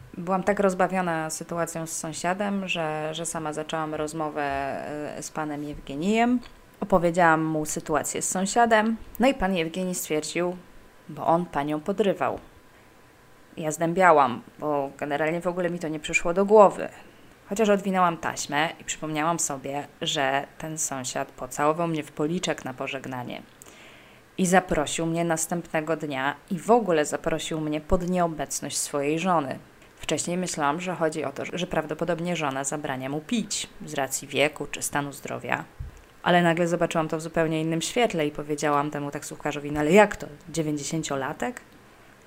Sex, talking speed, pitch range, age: female, 150 wpm, 150-180 Hz, 20-39